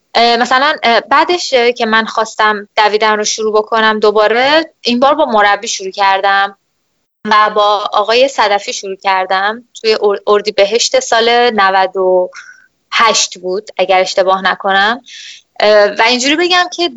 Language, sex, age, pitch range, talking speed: Persian, female, 20-39, 200-245 Hz, 125 wpm